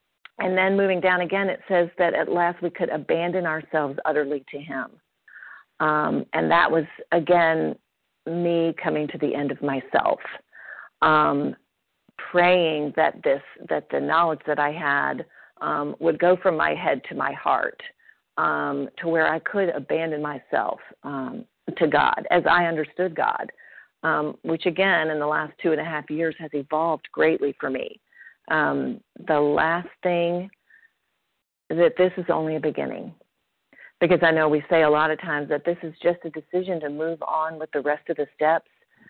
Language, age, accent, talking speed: English, 50-69, American, 170 wpm